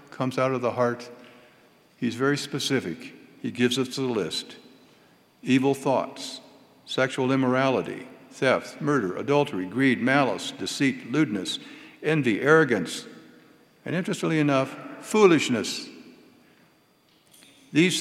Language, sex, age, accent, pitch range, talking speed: English, male, 60-79, American, 125-160 Hz, 105 wpm